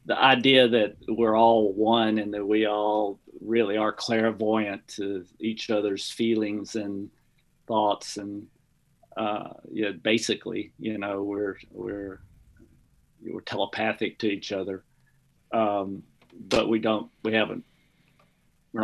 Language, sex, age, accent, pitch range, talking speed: English, male, 50-69, American, 105-120 Hz, 125 wpm